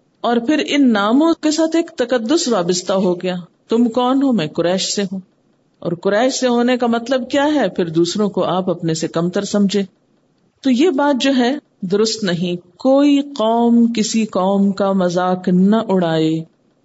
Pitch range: 185-265 Hz